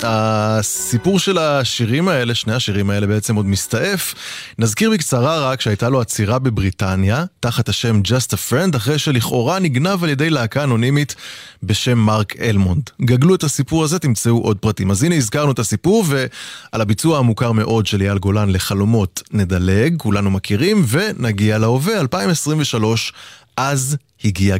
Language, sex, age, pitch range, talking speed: English, male, 20-39, 105-150 Hz, 140 wpm